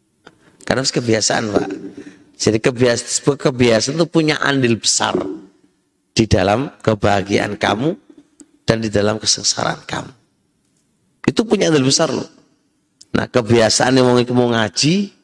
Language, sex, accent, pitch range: Indonesian, male, native, 110-155 Hz